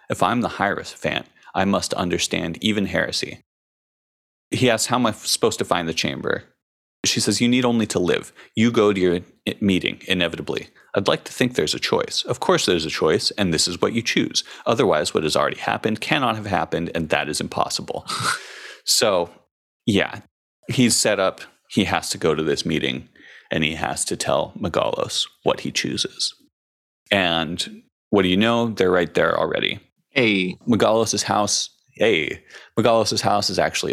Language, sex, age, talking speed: English, male, 30-49, 175 wpm